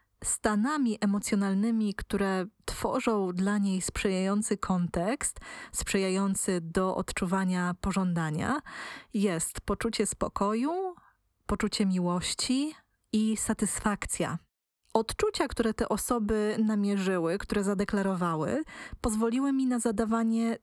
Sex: female